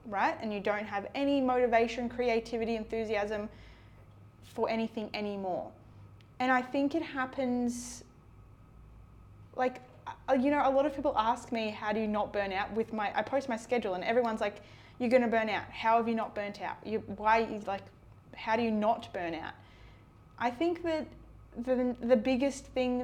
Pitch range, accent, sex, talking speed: 205-250 Hz, Australian, female, 180 wpm